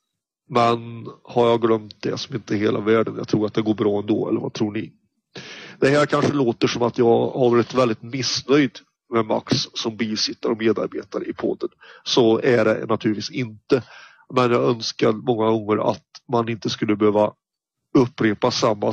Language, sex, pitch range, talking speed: Swedish, male, 110-125 Hz, 180 wpm